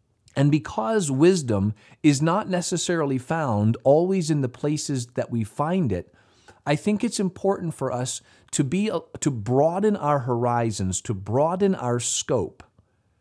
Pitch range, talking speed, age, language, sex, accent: 110-150 Hz, 140 wpm, 40-59, English, male, American